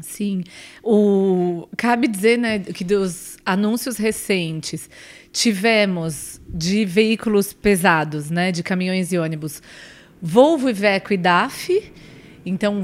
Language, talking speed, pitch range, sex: Portuguese, 110 wpm, 180-220 Hz, female